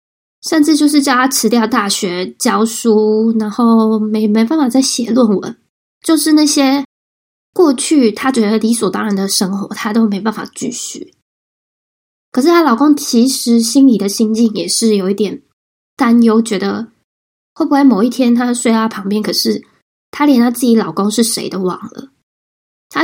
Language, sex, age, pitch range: Chinese, female, 10-29, 220-275 Hz